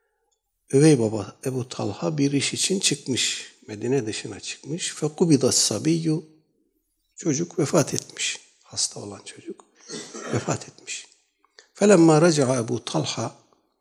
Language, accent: Turkish, native